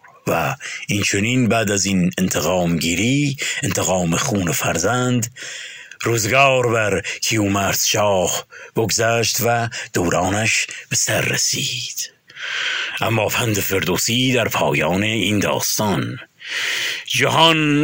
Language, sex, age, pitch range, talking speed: Persian, male, 50-69, 160-255 Hz, 95 wpm